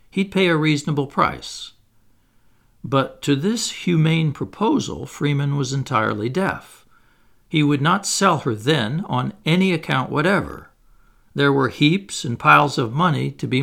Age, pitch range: 60-79, 130-160 Hz